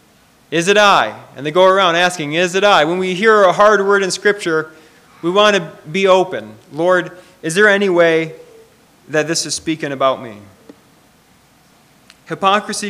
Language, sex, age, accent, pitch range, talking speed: English, male, 30-49, American, 155-195 Hz, 165 wpm